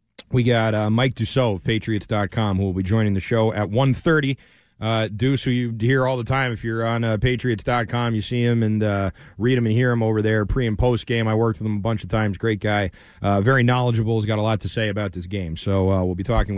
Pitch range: 115-165 Hz